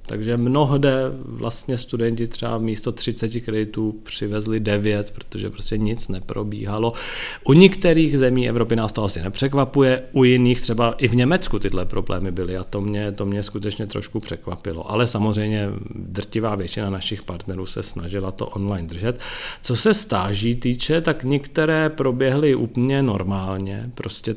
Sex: male